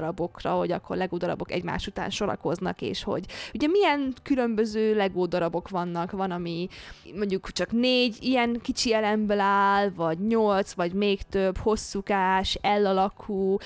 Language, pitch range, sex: Hungarian, 185-225 Hz, female